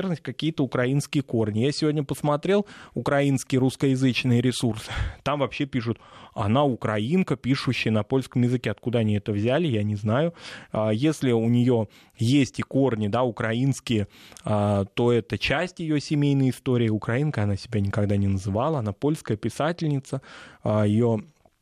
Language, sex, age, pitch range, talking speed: Russian, male, 20-39, 110-145 Hz, 135 wpm